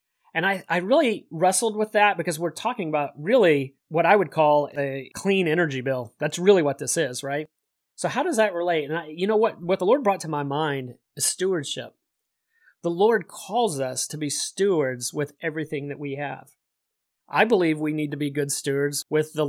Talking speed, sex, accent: 205 wpm, male, American